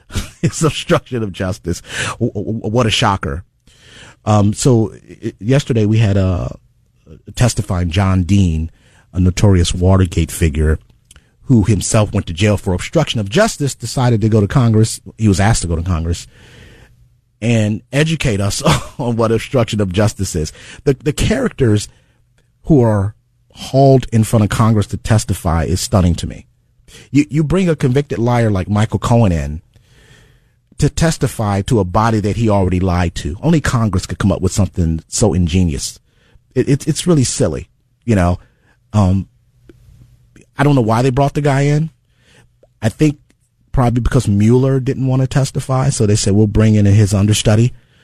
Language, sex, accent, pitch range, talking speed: English, male, American, 100-125 Hz, 160 wpm